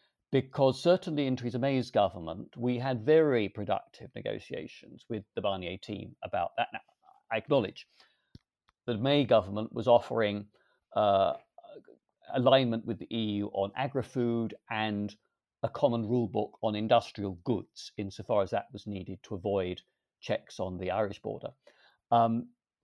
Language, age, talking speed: English, 50-69, 140 wpm